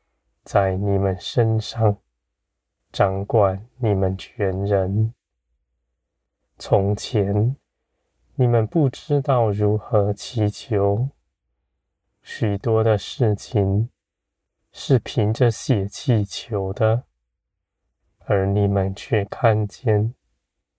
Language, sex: Chinese, male